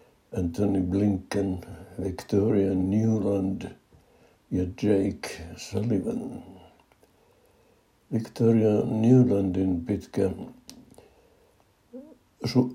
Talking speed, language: 50 wpm, Finnish